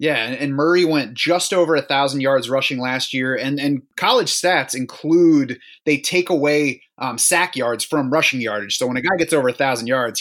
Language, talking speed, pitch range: English, 195 wpm, 130-155 Hz